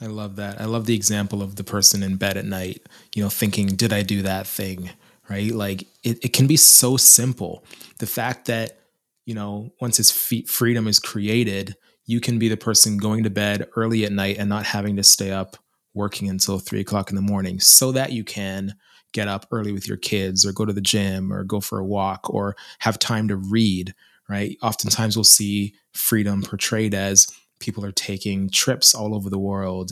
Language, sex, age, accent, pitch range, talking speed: English, male, 20-39, American, 100-115 Hz, 210 wpm